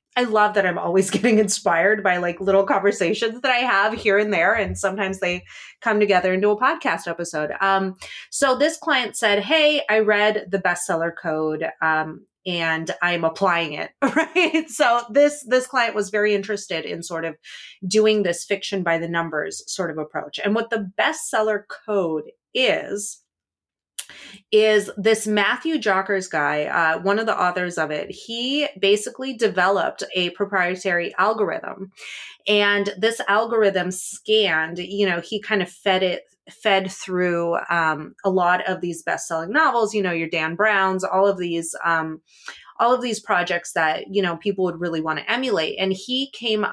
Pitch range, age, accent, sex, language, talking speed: 175-215 Hz, 30-49, American, female, English, 170 wpm